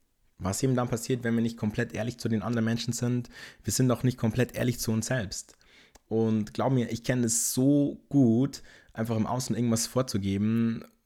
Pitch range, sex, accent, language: 105-120 Hz, male, German, German